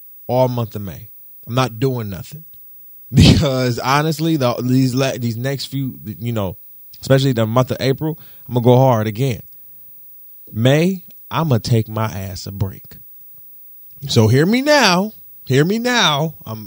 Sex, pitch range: male, 110-145 Hz